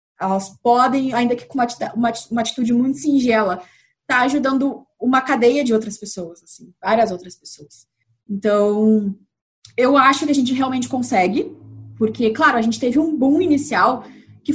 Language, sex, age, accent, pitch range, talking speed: Portuguese, female, 20-39, Brazilian, 225-280 Hz, 165 wpm